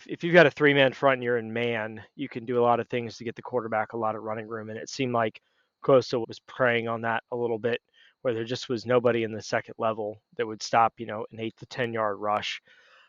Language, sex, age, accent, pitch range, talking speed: English, male, 20-39, American, 115-140 Hz, 260 wpm